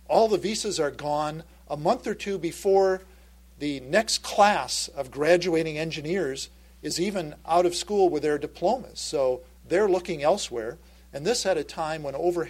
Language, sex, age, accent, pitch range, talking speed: English, male, 50-69, American, 115-175 Hz, 170 wpm